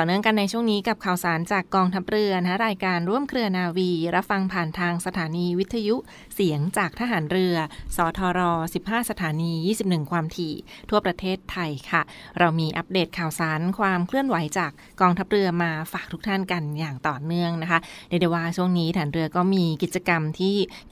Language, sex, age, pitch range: Thai, female, 20-39, 170-205 Hz